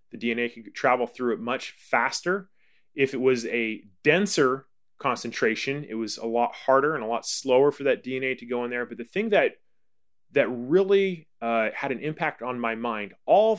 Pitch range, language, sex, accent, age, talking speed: 115-155 Hz, English, male, American, 30-49, 190 wpm